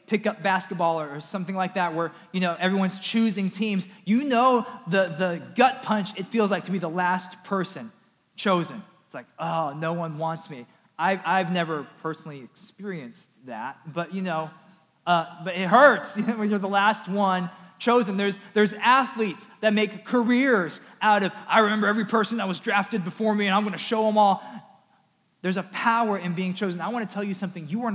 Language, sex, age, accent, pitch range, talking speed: English, male, 20-39, American, 170-205 Hz, 200 wpm